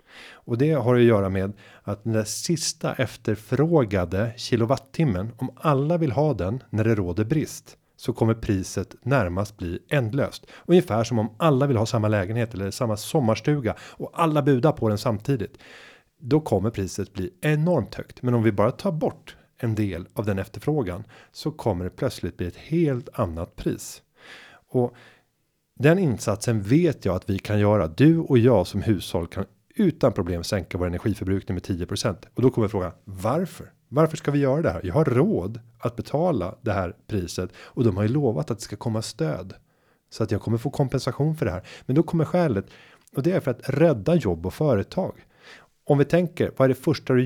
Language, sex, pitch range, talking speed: Swedish, male, 105-145 Hz, 190 wpm